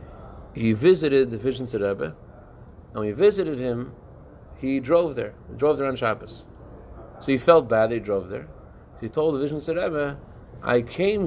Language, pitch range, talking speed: English, 115-155 Hz, 175 wpm